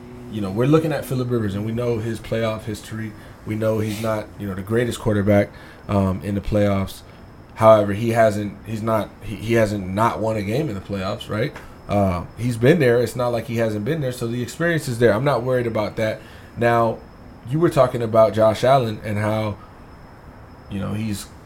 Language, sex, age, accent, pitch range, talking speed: English, male, 20-39, American, 105-120 Hz, 210 wpm